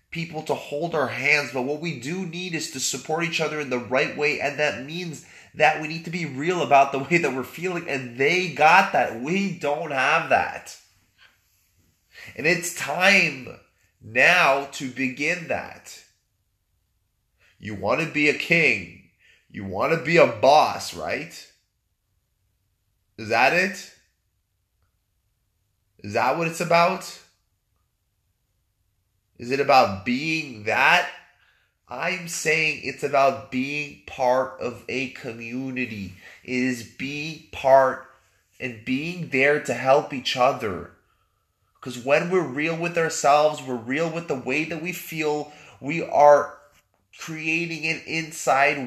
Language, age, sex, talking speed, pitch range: English, 20-39, male, 140 wpm, 120-160 Hz